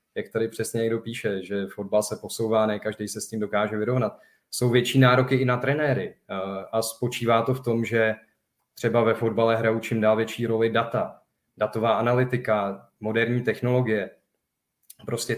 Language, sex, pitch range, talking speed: Czech, male, 110-125 Hz, 165 wpm